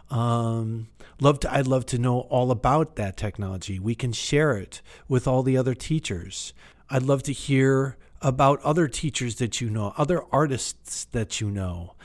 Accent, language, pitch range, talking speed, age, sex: American, English, 105-140 Hz, 175 wpm, 40-59, male